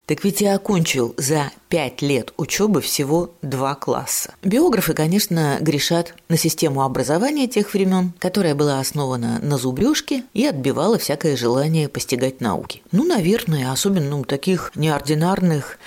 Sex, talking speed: female, 135 wpm